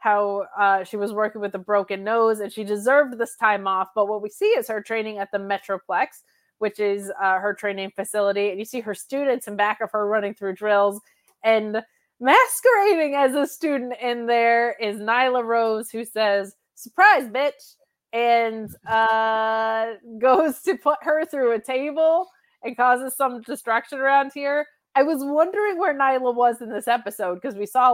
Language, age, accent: English, 20-39, American